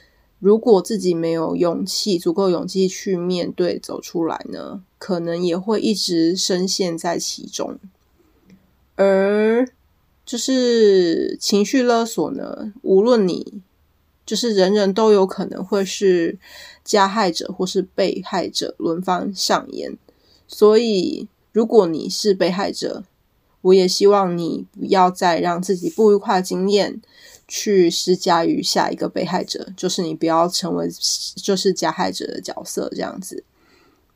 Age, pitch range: 20-39, 175-215 Hz